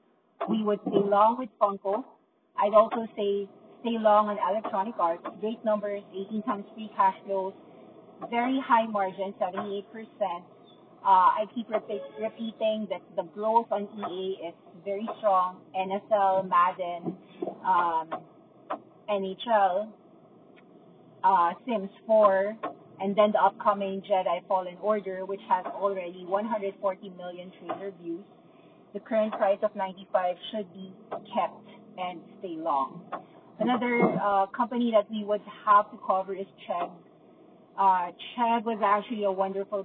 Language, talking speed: English, 130 wpm